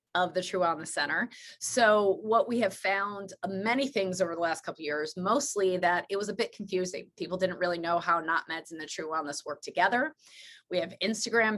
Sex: female